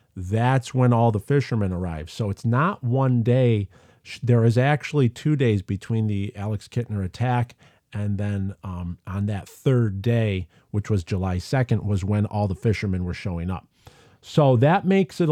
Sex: male